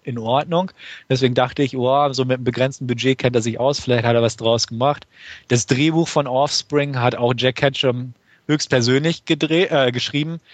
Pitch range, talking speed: 120-140 Hz, 175 wpm